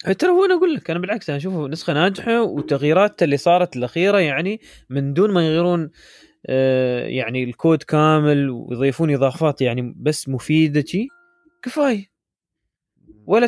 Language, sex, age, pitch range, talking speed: Arabic, male, 20-39, 135-195 Hz, 135 wpm